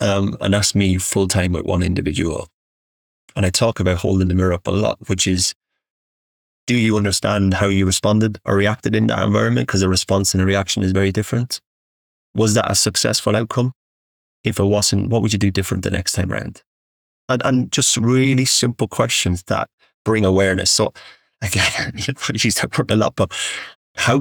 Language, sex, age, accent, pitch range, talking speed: English, male, 30-49, British, 95-115 Hz, 190 wpm